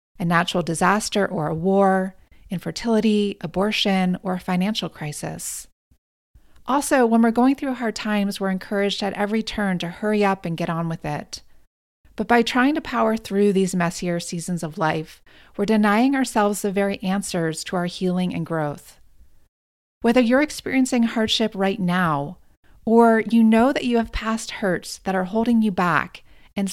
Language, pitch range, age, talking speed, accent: English, 175-220 Hz, 30-49, 165 wpm, American